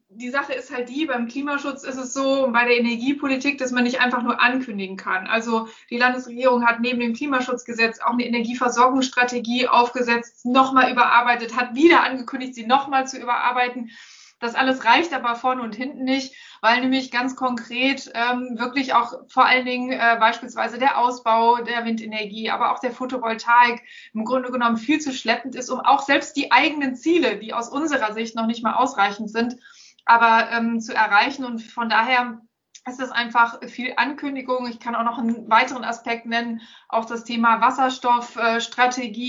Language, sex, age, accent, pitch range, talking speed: German, female, 20-39, German, 235-260 Hz, 175 wpm